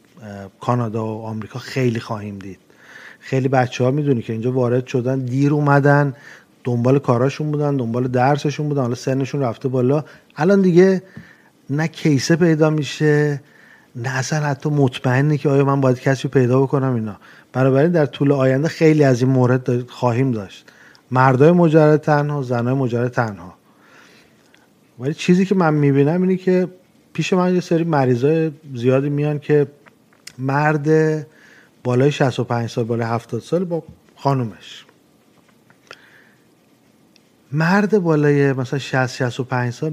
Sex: male